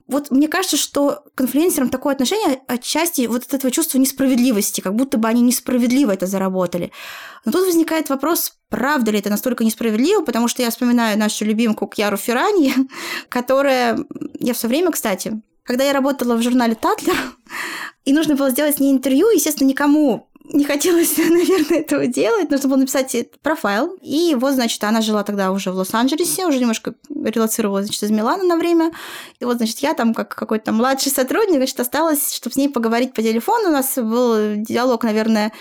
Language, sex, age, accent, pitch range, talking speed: Russian, female, 20-39, native, 230-295 Hz, 180 wpm